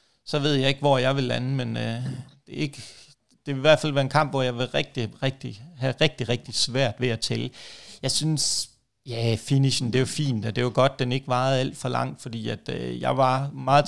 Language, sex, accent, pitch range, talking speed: Danish, male, native, 115-135 Hz, 255 wpm